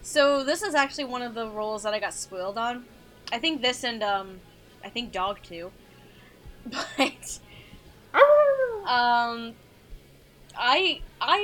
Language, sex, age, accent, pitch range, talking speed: English, female, 10-29, American, 205-285 Hz, 135 wpm